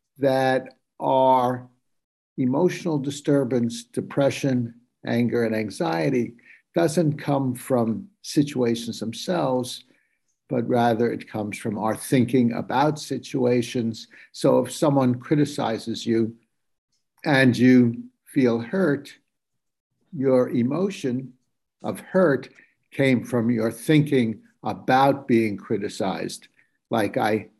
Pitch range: 120-150 Hz